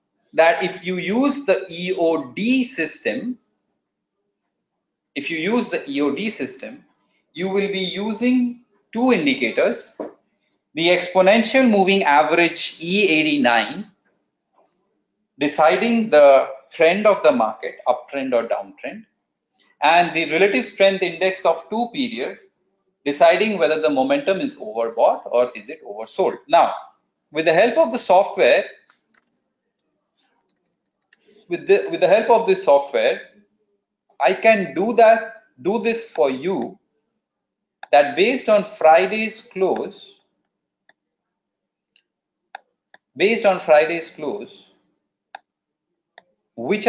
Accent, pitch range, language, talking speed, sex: native, 165-230 Hz, Tamil, 110 wpm, male